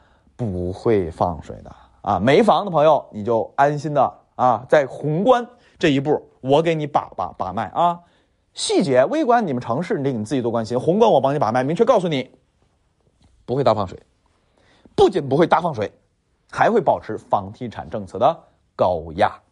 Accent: native